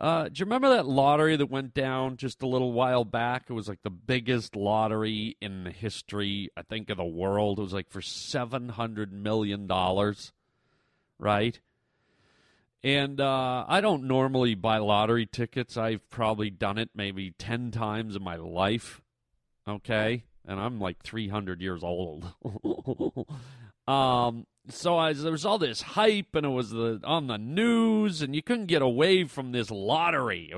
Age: 40-59